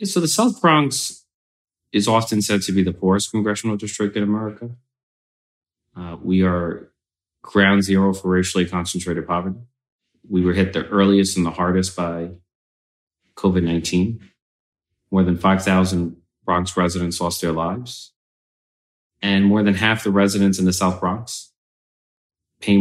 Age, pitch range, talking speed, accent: 30-49, 85-100 Hz, 140 wpm, American